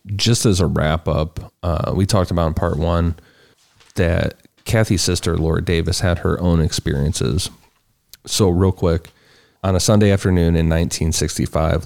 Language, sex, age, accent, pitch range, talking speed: English, male, 30-49, American, 80-90 Hz, 150 wpm